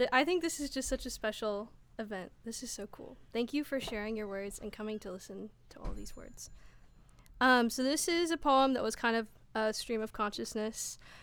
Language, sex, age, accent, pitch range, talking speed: English, female, 10-29, American, 210-250 Hz, 220 wpm